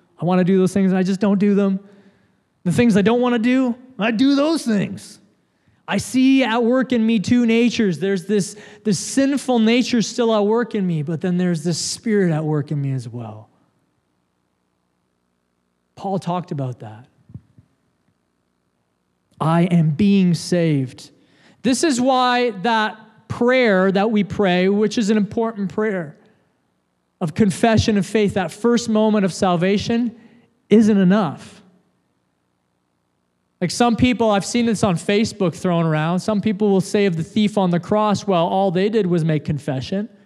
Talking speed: 165 wpm